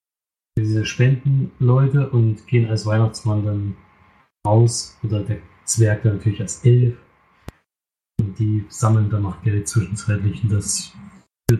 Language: German